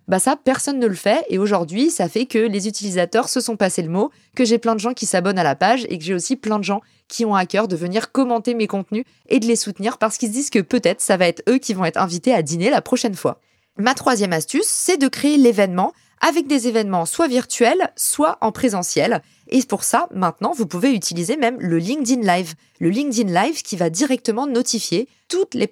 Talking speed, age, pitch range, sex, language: 240 wpm, 20-39, 190-255 Hz, female, French